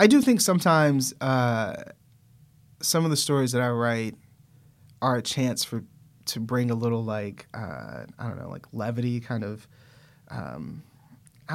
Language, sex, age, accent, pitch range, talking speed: English, male, 30-49, American, 120-140 Hz, 165 wpm